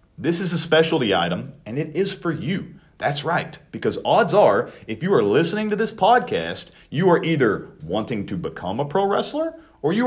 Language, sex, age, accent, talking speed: English, male, 40-59, American, 195 wpm